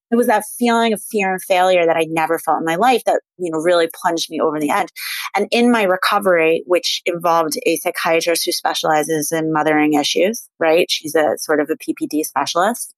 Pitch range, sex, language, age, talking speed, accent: 165-205 Hz, female, English, 30-49, 210 wpm, American